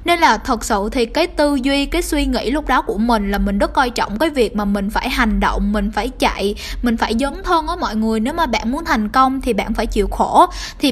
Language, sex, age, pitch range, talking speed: Vietnamese, female, 10-29, 220-290 Hz, 270 wpm